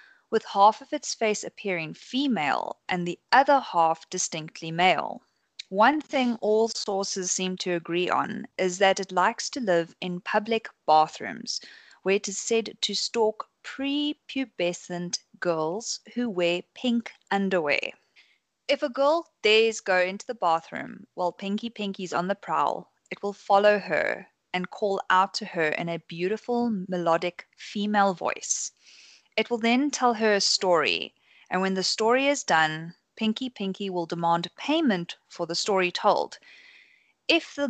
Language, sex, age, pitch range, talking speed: English, female, 20-39, 175-230 Hz, 150 wpm